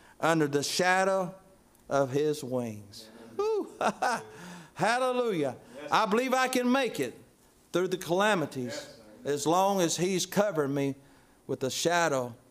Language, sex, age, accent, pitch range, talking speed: English, male, 50-69, American, 145-175 Hz, 120 wpm